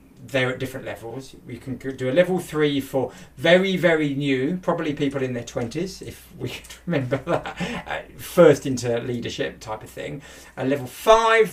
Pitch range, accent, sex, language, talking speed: 120-150 Hz, British, male, English, 170 wpm